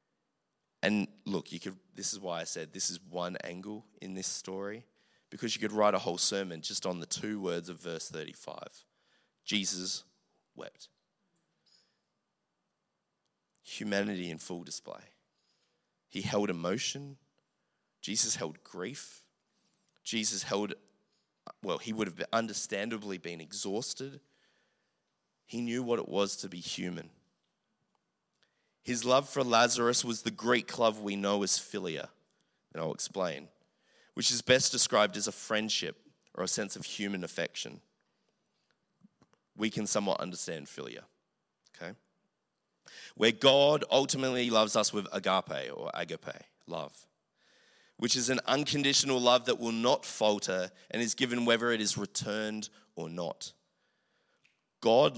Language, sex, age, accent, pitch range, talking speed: English, male, 20-39, Australian, 100-130 Hz, 135 wpm